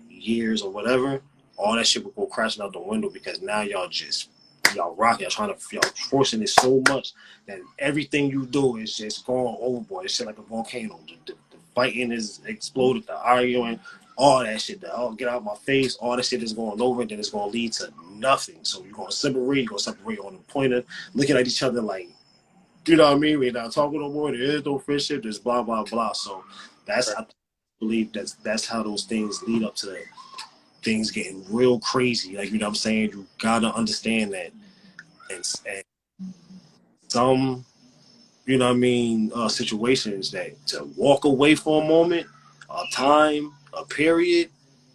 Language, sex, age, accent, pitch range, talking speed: English, male, 20-39, American, 110-145 Hz, 200 wpm